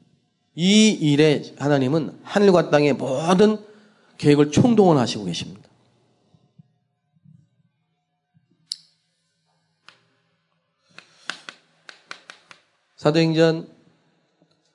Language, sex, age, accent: Korean, male, 40-59, native